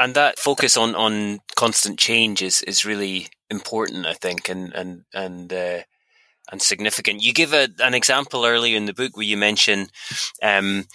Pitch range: 95-120 Hz